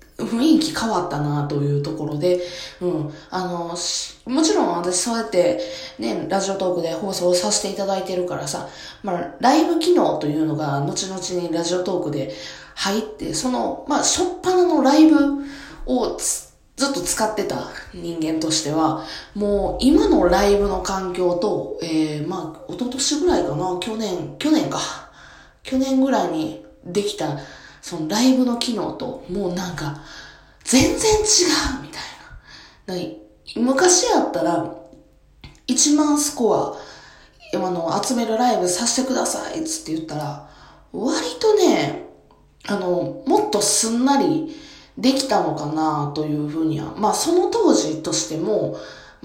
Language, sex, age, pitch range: Japanese, female, 20-39, 170-270 Hz